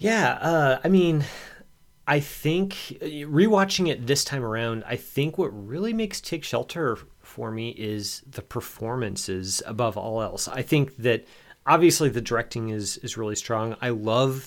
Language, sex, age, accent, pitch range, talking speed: English, male, 30-49, American, 105-140 Hz, 160 wpm